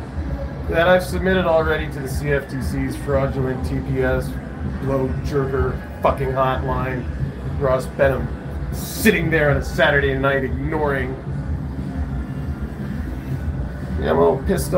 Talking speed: 110 wpm